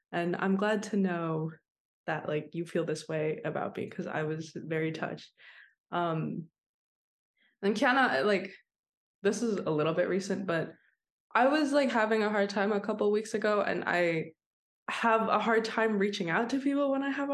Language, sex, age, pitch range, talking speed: English, female, 20-39, 165-230 Hz, 185 wpm